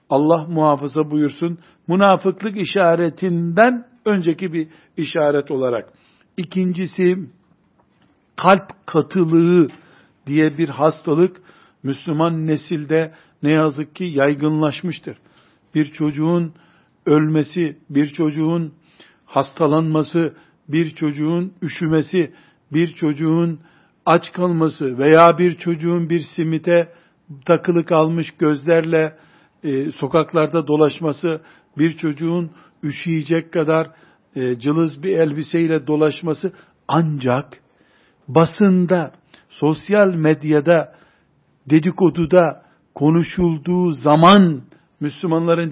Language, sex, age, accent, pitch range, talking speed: Turkish, male, 60-79, native, 155-175 Hz, 80 wpm